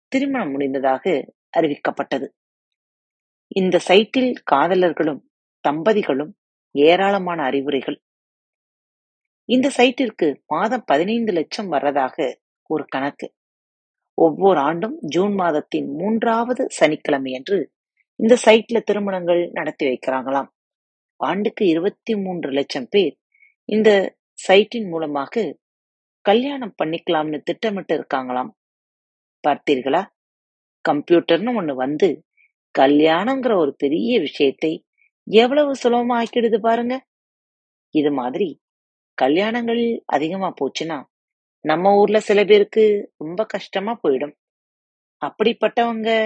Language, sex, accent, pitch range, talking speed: Tamil, female, native, 150-230 Hz, 65 wpm